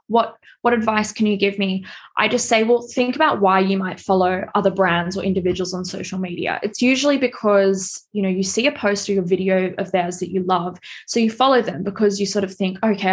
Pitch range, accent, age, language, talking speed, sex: 190-220 Hz, Australian, 20-39, English, 235 wpm, female